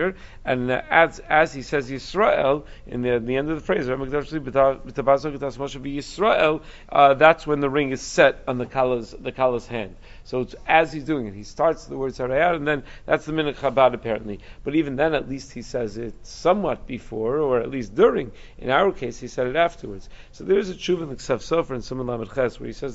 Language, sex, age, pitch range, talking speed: English, male, 50-69, 115-140 Hz, 200 wpm